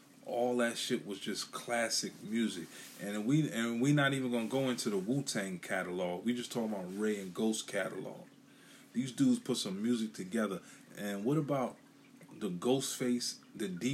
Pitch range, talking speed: 115-160 Hz, 170 wpm